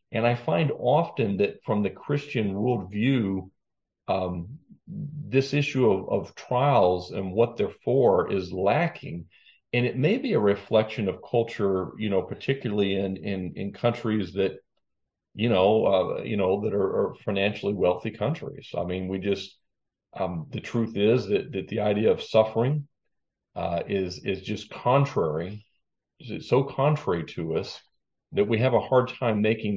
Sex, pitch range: male, 95-125 Hz